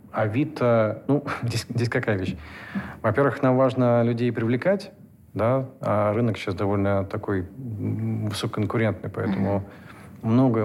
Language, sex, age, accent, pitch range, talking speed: Russian, male, 40-59, native, 100-120 Hz, 115 wpm